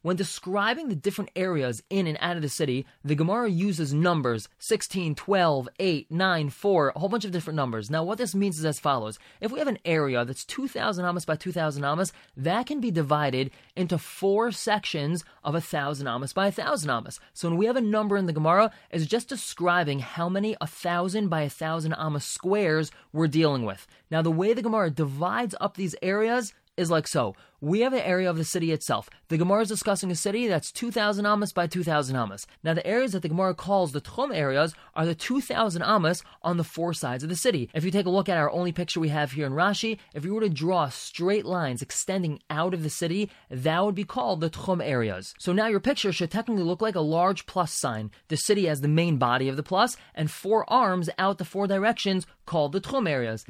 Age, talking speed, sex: 20-39, 220 wpm, male